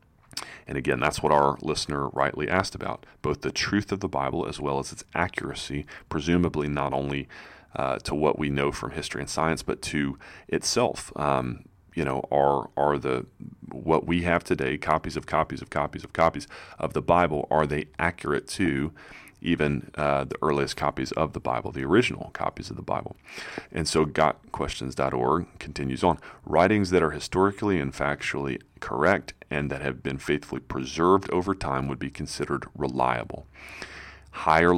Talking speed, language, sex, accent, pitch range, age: 170 wpm, English, male, American, 70-85 Hz, 30-49